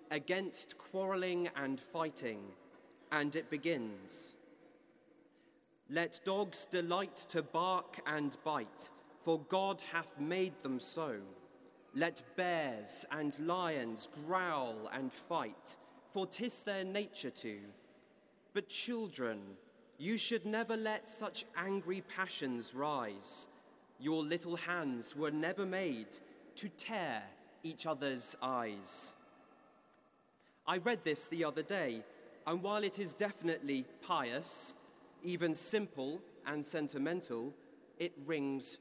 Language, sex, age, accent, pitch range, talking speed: English, male, 30-49, British, 145-190 Hz, 110 wpm